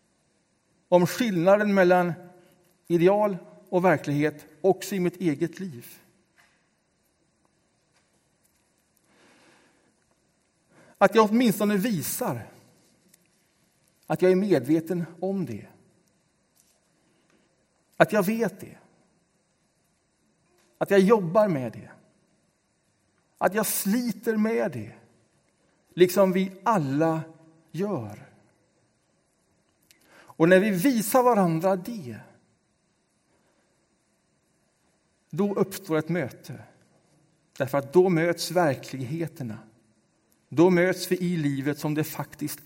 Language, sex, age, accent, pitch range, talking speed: Swedish, male, 60-79, Norwegian, 135-185 Hz, 85 wpm